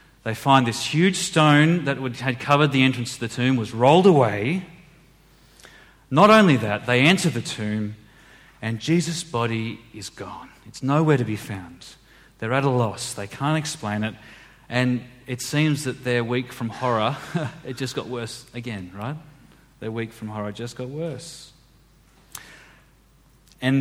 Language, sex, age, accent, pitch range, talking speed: English, male, 30-49, Australian, 115-155 Hz, 165 wpm